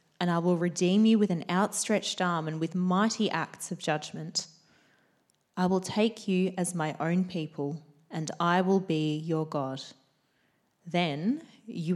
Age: 20-39